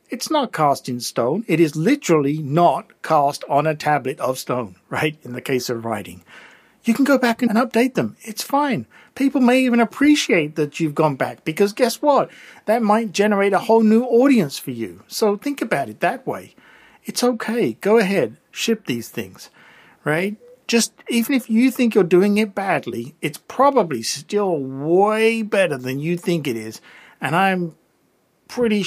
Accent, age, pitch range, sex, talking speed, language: British, 50-69, 155-225 Hz, male, 180 wpm, English